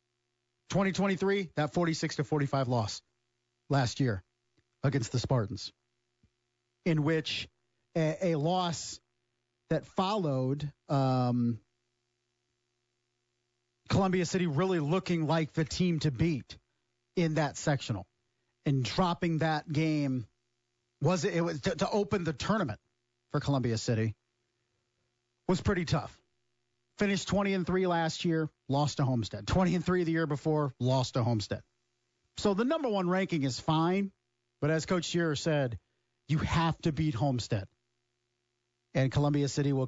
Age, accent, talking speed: 40-59, American, 130 wpm